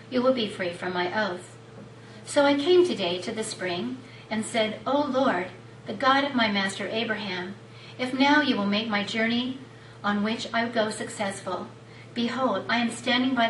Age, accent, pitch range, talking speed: 40-59, American, 190-260 Hz, 180 wpm